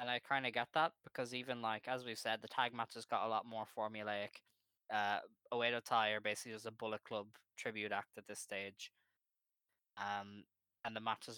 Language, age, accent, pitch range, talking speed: English, 10-29, Irish, 105-120 Hz, 200 wpm